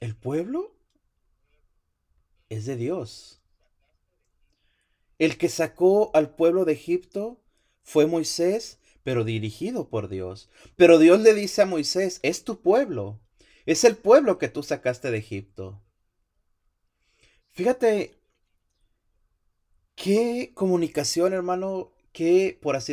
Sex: male